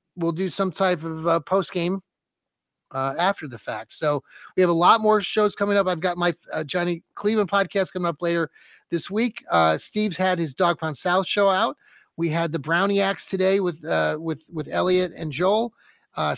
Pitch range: 160-195 Hz